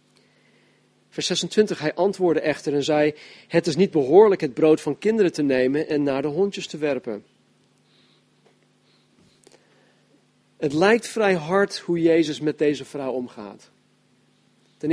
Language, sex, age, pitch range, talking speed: Dutch, male, 40-59, 140-175 Hz, 135 wpm